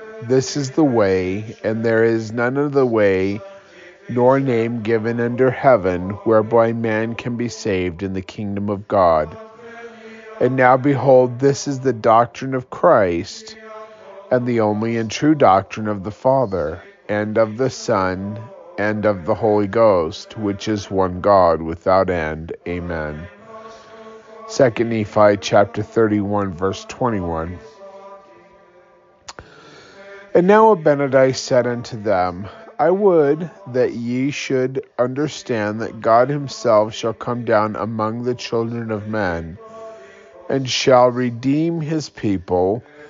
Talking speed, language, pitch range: 130 wpm, English, 105-145 Hz